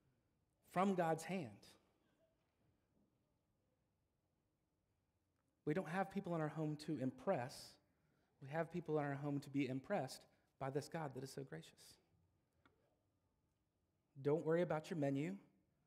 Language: English